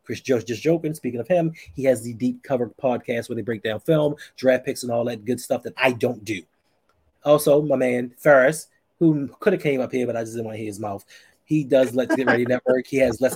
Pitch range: 115-145 Hz